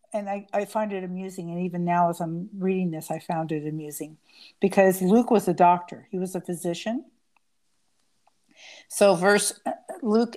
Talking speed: 170 wpm